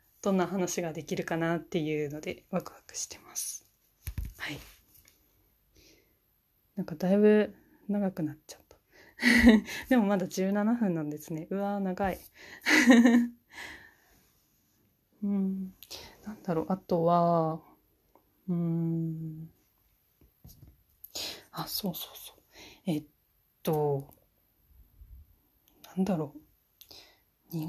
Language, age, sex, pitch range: Japanese, 30-49, female, 160-210 Hz